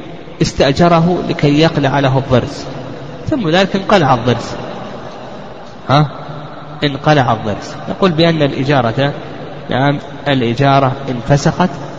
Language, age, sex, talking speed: Arabic, 30-49, male, 90 wpm